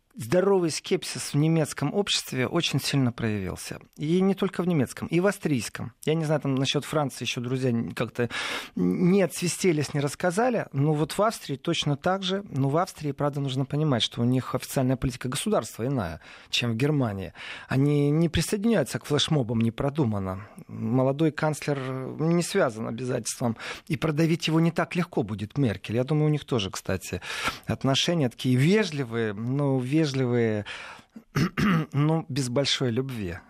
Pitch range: 120-160 Hz